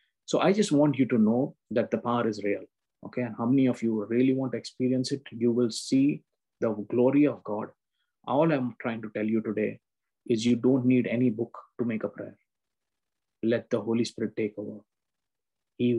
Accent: Indian